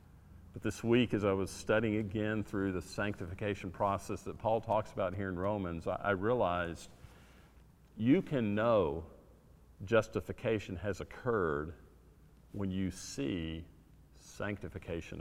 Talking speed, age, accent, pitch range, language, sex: 120 wpm, 50-69, American, 85-105 Hz, English, male